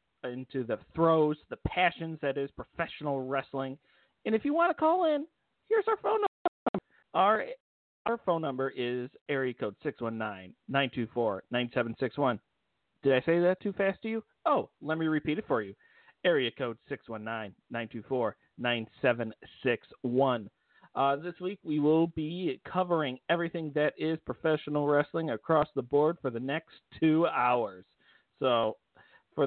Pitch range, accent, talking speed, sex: 130-190 Hz, American, 140 wpm, male